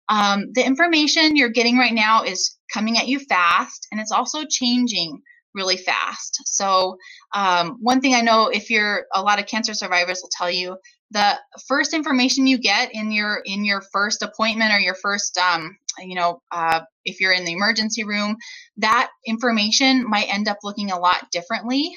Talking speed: 185 wpm